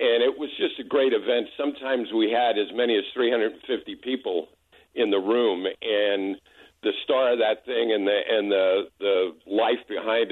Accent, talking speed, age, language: American, 180 wpm, 50-69, English